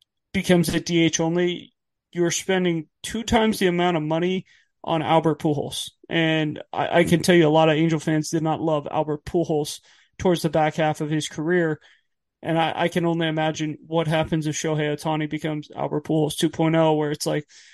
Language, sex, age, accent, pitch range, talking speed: English, male, 20-39, American, 155-180 Hz, 190 wpm